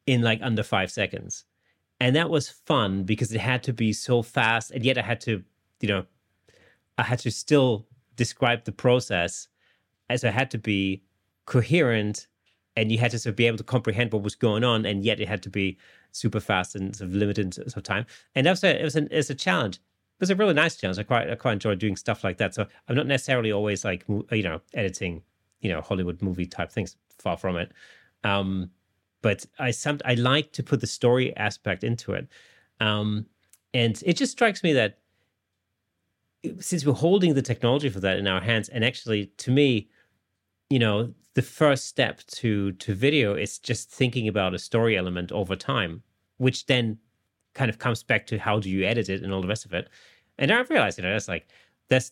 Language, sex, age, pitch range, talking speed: English, male, 30-49, 95-125 Hz, 210 wpm